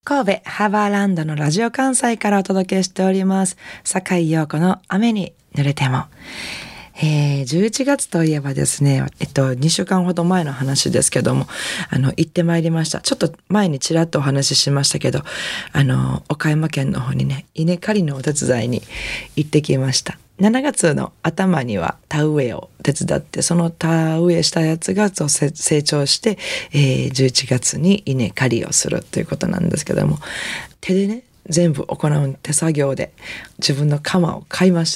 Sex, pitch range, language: female, 140-185 Hz, Japanese